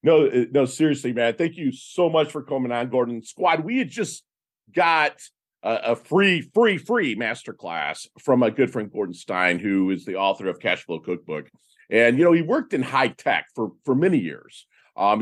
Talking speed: 195 wpm